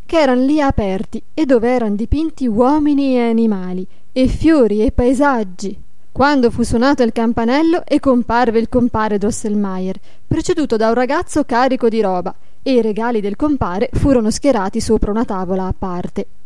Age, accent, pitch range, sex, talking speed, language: 20-39, native, 210-275 Hz, female, 160 wpm, Italian